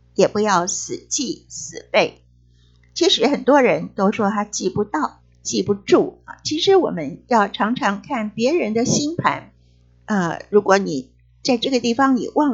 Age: 50-69